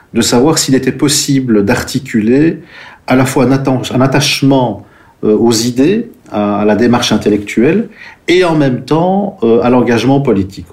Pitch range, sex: 100-130 Hz, male